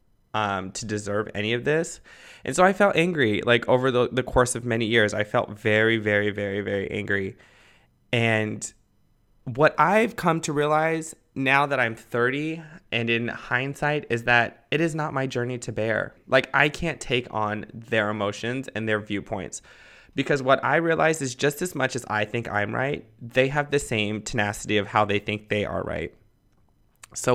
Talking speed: 185 wpm